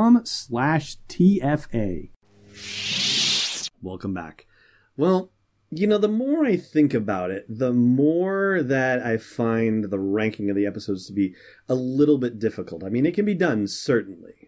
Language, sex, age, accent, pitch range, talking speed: English, male, 30-49, American, 100-120 Hz, 145 wpm